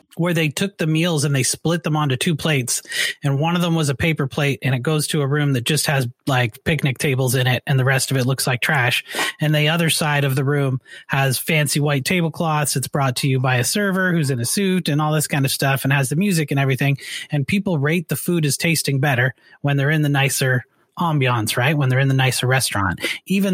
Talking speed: 250 wpm